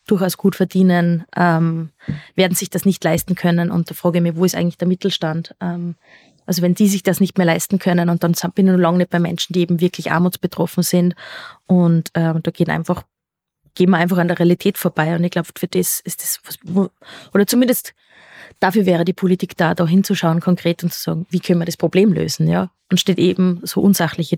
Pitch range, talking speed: 175-195 Hz, 220 wpm